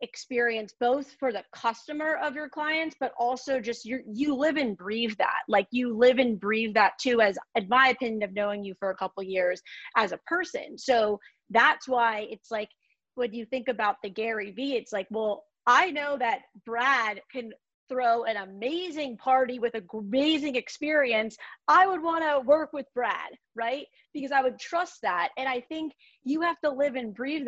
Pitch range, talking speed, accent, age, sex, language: 210-265 Hz, 195 wpm, American, 30-49, female, English